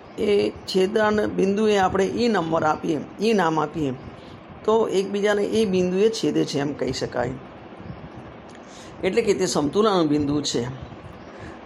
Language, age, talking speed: Gujarati, 50-69, 105 wpm